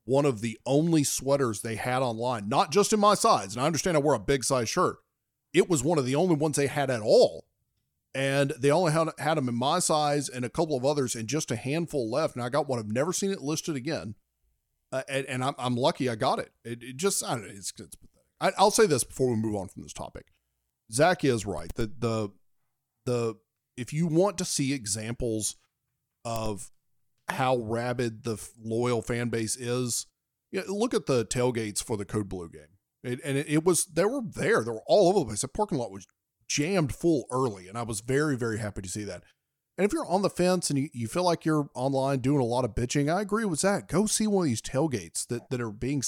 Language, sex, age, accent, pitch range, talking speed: English, male, 40-59, American, 115-150 Hz, 235 wpm